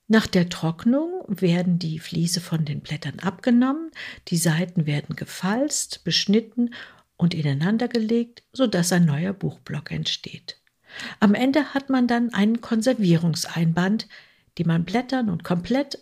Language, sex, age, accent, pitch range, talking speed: German, female, 50-69, German, 170-230 Hz, 125 wpm